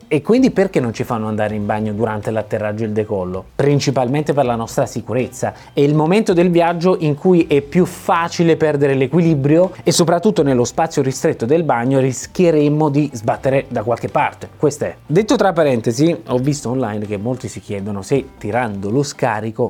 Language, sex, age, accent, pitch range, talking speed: Italian, male, 20-39, native, 120-180 Hz, 185 wpm